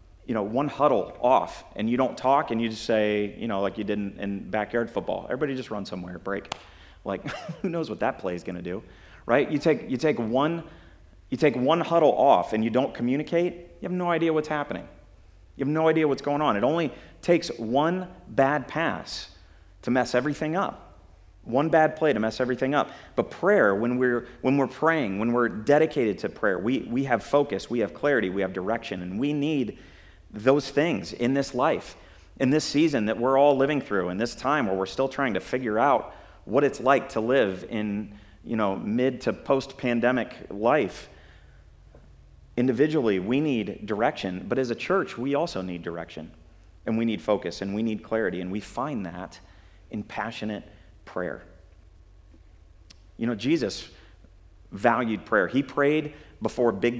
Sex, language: male, English